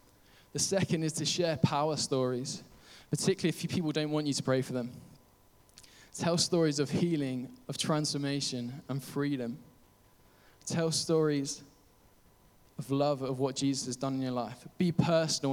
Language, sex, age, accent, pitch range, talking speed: English, male, 10-29, British, 120-145 Hz, 150 wpm